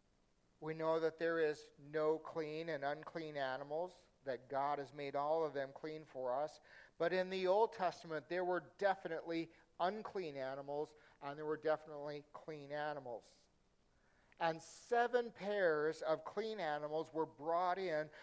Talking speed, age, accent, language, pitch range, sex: 150 wpm, 50-69, American, English, 145-180 Hz, male